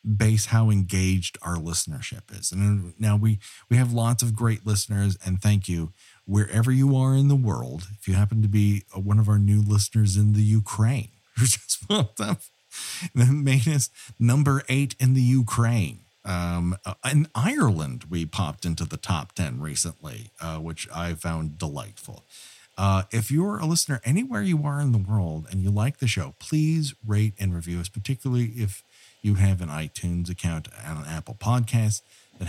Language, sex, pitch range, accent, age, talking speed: English, male, 95-135 Hz, American, 50-69, 180 wpm